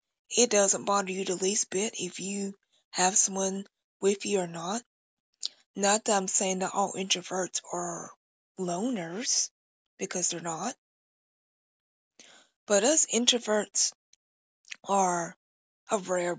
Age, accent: 20-39, American